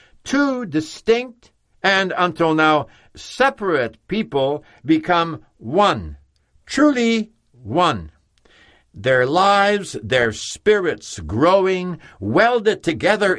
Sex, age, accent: male, 60-79, American